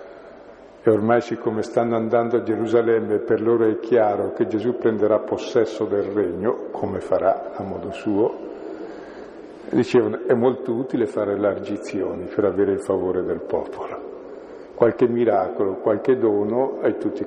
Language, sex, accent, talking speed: Italian, male, native, 140 wpm